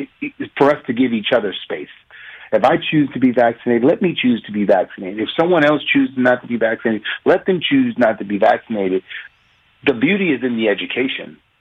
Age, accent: 40-59, American